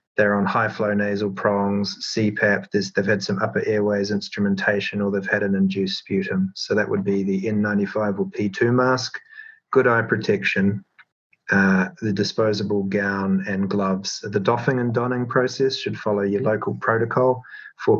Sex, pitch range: male, 105-120 Hz